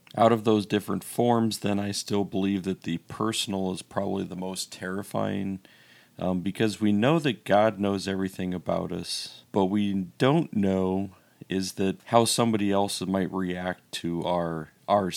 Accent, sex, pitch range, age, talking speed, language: American, male, 90-105 Hz, 40-59, 160 wpm, English